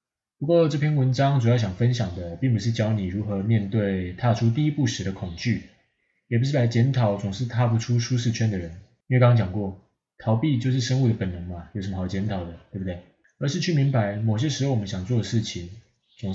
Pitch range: 95-120 Hz